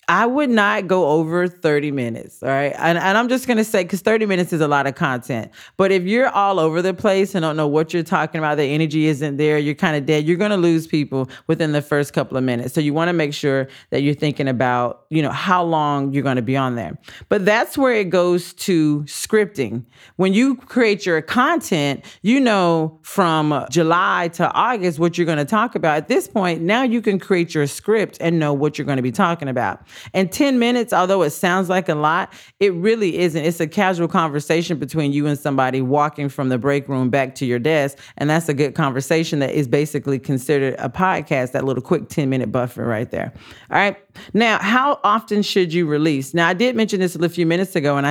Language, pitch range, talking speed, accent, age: English, 145-190 Hz, 230 wpm, American, 40-59